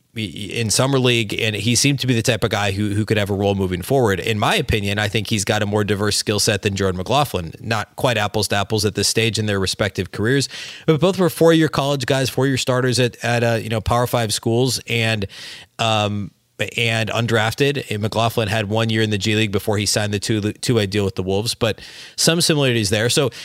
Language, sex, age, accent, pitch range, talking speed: English, male, 30-49, American, 105-130 Hz, 240 wpm